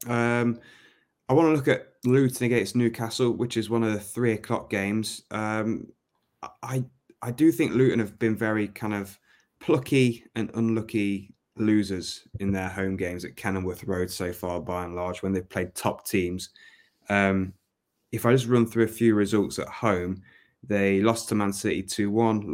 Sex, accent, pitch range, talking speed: male, British, 100-115 Hz, 175 wpm